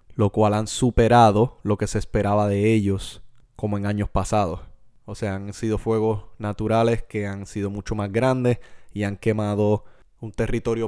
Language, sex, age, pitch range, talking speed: English, male, 20-39, 100-115 Hz, 170 wpm